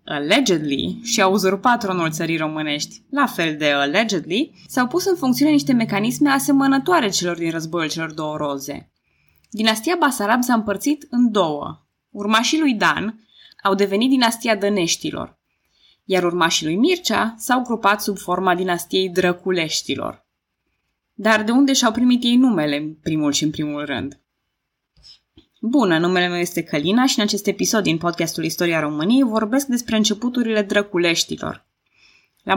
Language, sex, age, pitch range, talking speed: Romanian, female, 20-39, 165-245 Hz, 140 wpm